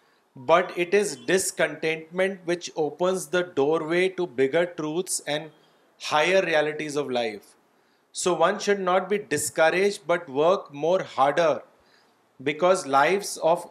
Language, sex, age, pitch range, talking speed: Urdu, male, 30-49, 155-185 Hz, 125 wpm